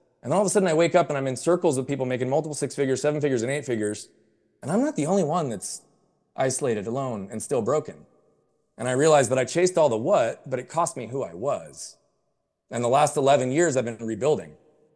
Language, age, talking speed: English, 30-49, 240 wpm